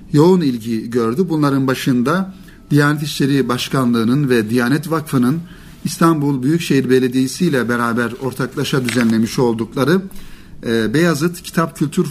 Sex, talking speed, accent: male, 110 wpm, native